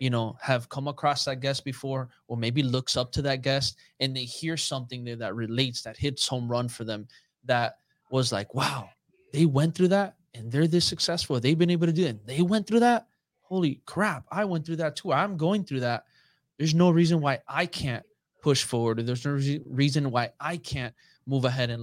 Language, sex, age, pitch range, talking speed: English, male, 20-39, 125-150 Hz, 215 wpm